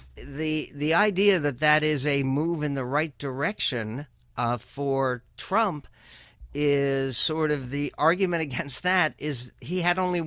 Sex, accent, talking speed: male, American, 150 wpm